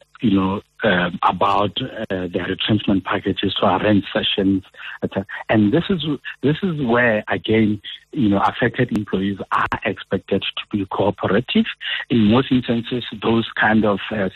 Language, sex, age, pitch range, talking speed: English, male, 60-79, 95-115 Hz, 150 wpm